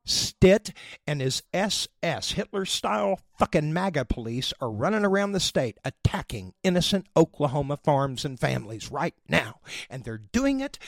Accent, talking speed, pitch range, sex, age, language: American, 140 wpm, 135-205 Hz, male, 50-69, English